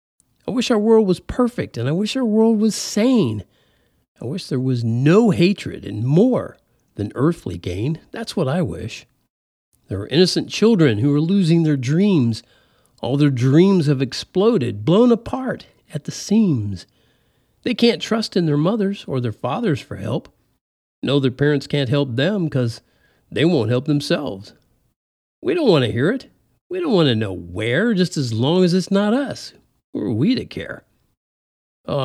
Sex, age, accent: male, 50-69, American